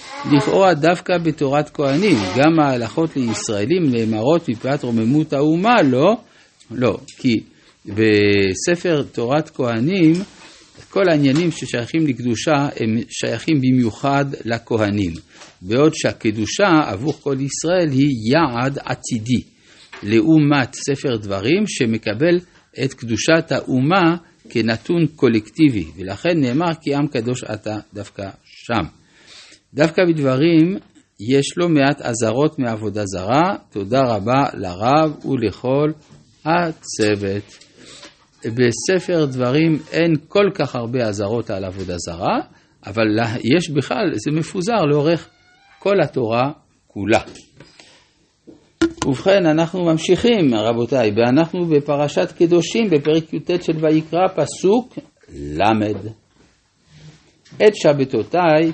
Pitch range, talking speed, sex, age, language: 115-160 Hz, 100 wpm, male, 60-79, Hebrew